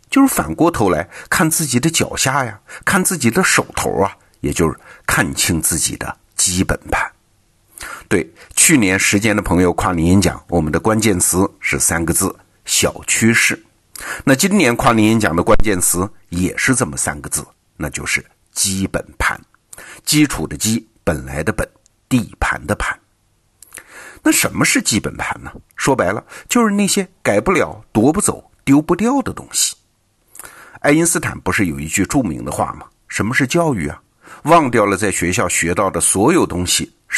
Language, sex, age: Chinese, male, 50-69